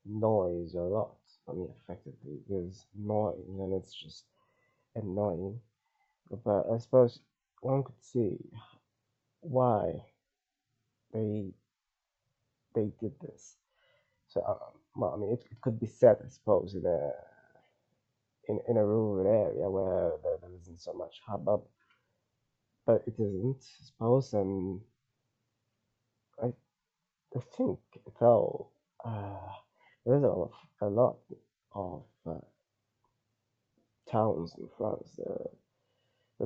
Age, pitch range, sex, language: 20-39, 105-130 Hz, male, English